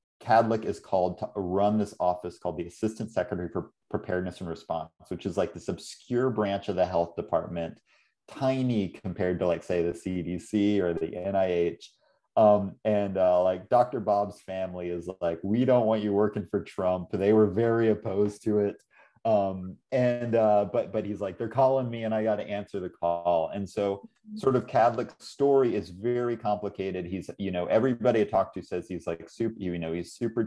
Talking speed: 195 wpm